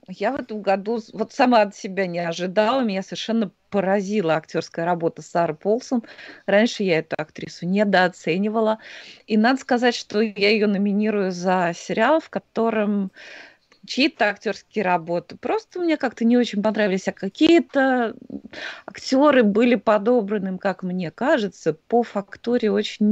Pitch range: 175-235 Hz